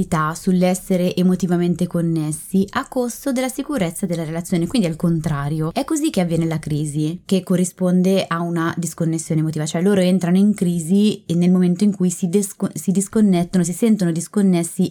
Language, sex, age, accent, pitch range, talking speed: Italian, female, 20-39, native, 165-220 Hz, 165 wpm